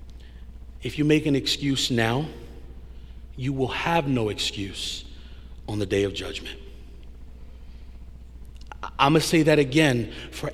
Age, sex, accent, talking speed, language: 40-59, male, American, 130 wpm, English